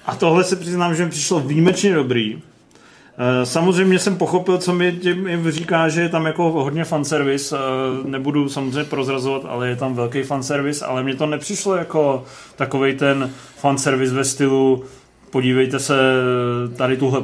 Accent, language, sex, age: native, Czech, male, 30-49